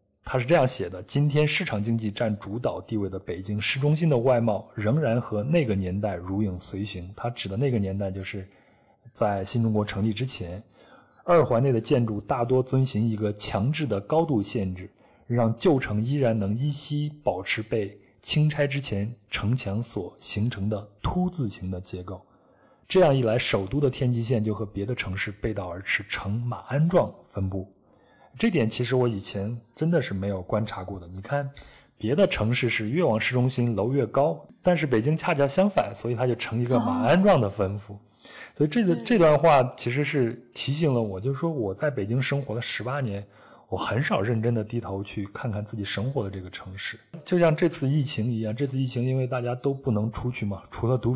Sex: male